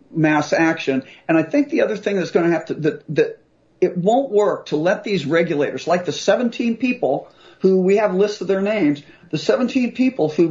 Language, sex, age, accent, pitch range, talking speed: English, male, 50-69, American, 150-195 Hz, 215 wpm